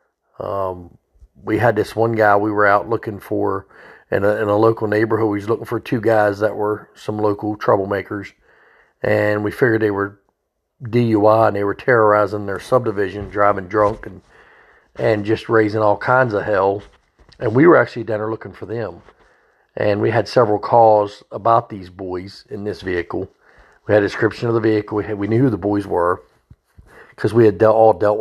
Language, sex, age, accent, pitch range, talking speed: English, male, 40-59, American, 105-115 Hz, 190 wpm